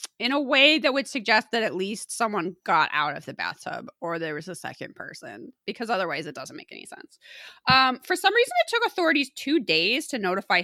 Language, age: English, 20-39